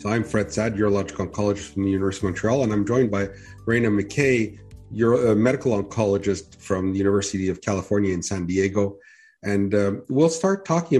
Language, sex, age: English, male, 40-59